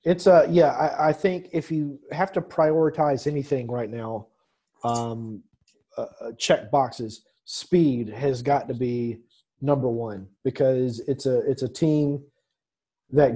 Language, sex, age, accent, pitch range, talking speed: English, male, 30-49, American, 115-140 Hz, 145 wpm